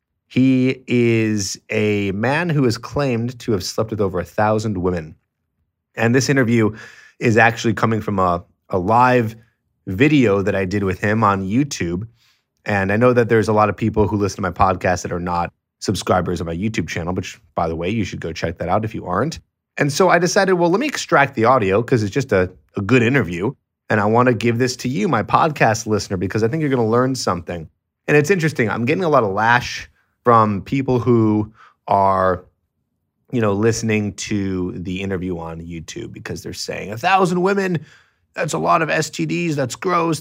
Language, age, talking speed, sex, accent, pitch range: English, 30-49, 205 wpm, male, American, 100-135 Hz